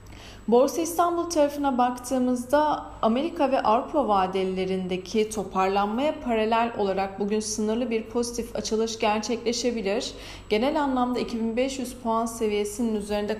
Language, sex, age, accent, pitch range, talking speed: Turkish, female, 40-59, native, 200-255 Hz, 105 wpm